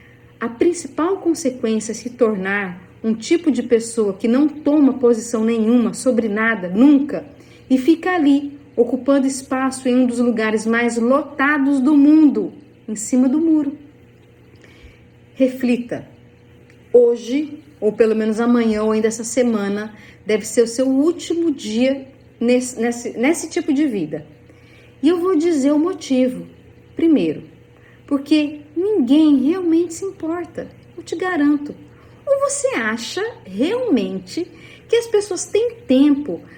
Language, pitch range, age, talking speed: Portuguese, 225-295 Hz, 40-59, 130 wpm